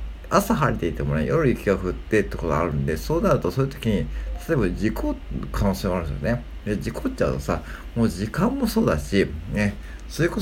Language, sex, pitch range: Japanese, male, 75-125 Hz